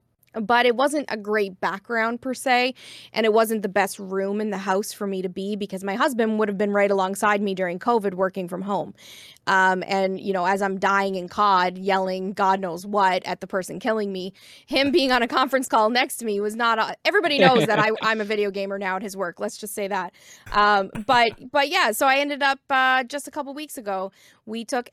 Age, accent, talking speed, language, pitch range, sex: 20-39, American, 235 wpm, English, 195-245 Hz, female